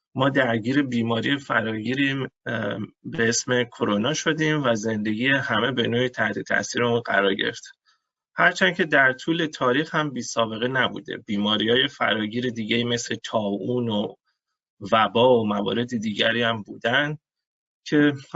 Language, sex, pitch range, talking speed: Persian, male, 110-130 Hz, 120 wpm